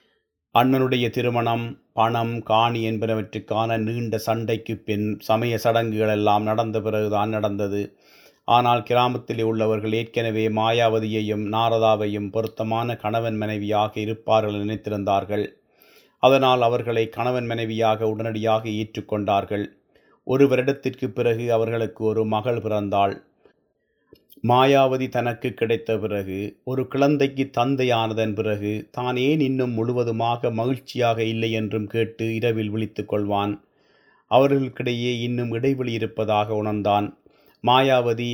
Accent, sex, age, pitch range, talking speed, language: native, male, 30-49, 110-120 Hz, 95 wpm, Tamil